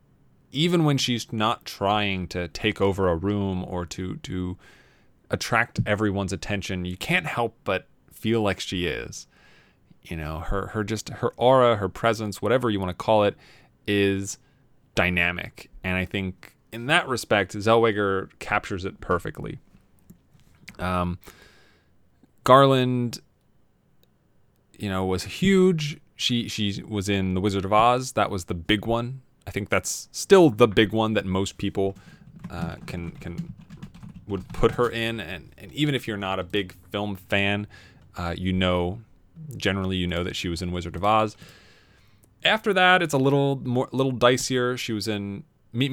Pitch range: 95-120 Hz